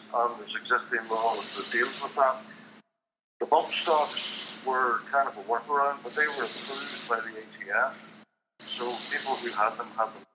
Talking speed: 175 wpm